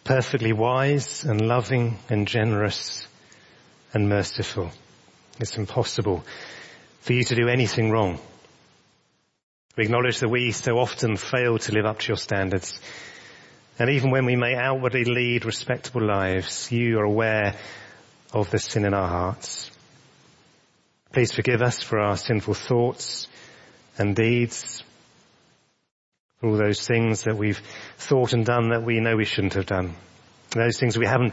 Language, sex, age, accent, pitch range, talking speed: English, male, 30-49, British, 105-120 Hz, 145 wpm